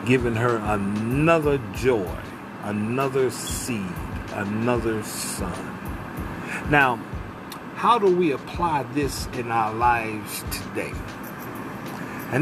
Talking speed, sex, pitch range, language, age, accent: 90 wpm, male, 115-145 Hz, English, 50-69, American